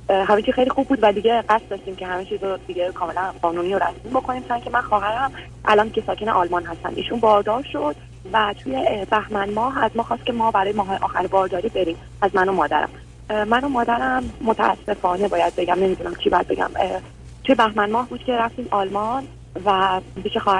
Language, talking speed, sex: Persian, 195 wpm, female